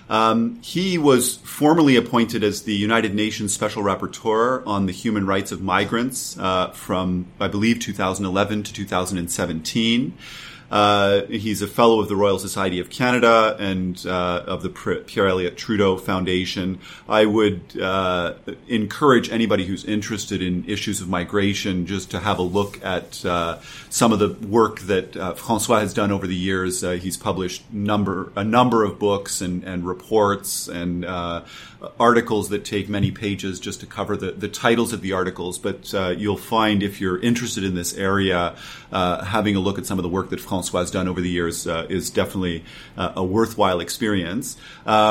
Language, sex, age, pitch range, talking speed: English, male, 30-49, 95-110 Hz, 175 wpm